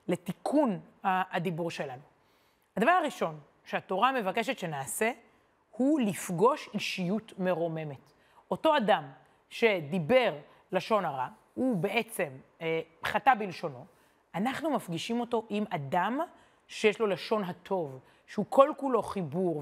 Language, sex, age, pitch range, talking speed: Hebrew, female, 30-49, 185-250 Hz, 105 wpm